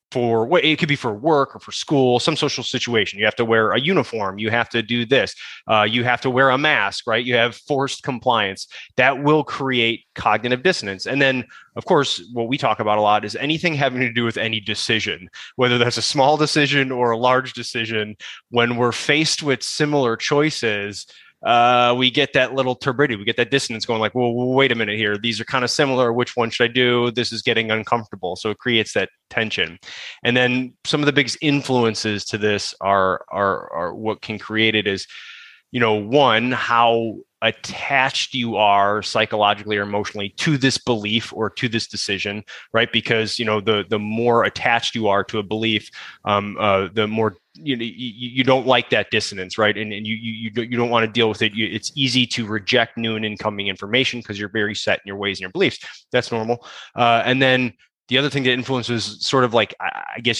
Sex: male